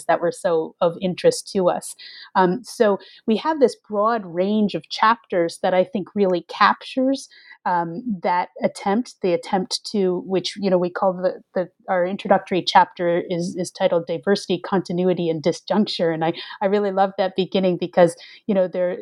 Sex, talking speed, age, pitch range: female, 175 wpm, 30-49, 180-210 Hz